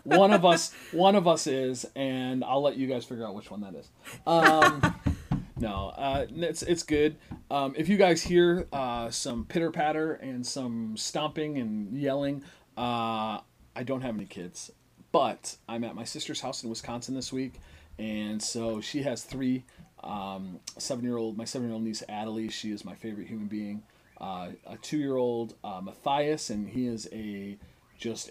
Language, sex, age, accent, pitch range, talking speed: English, male, 30-49, American, 110-140 Hz, 175 wpm